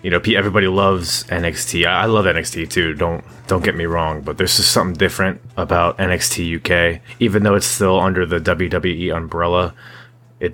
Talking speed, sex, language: 175 wpm, male, English